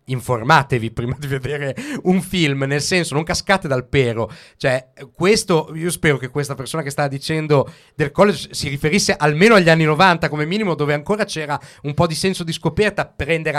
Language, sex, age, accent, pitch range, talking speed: Italian, male, 30-49, native, 140-185 Hz, 185 wpm